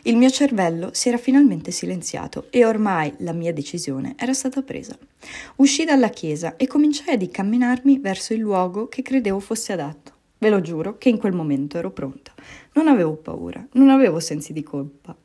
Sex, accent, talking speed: female, native, 180 wpm